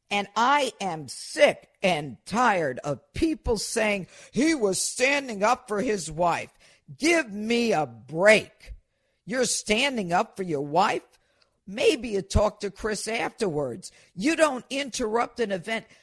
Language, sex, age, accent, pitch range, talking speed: English, female, 50-69, American, 190-245 Hz, 140 wpm